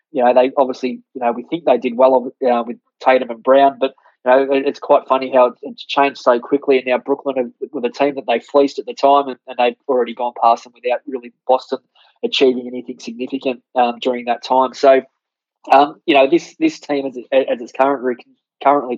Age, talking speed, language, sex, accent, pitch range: 20-39, 220 wpm, English, male, Australian, 125-140 Hz